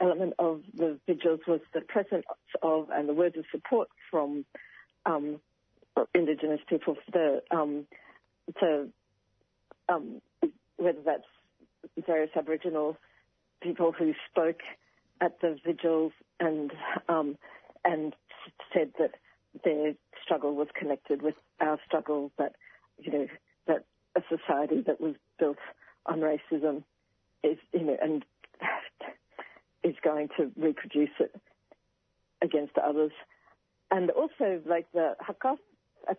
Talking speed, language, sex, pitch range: 120 wpm, English, female, 150-170 Hz